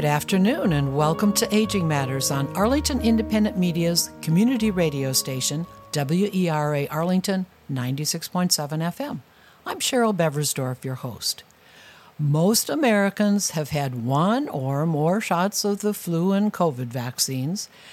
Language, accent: English, American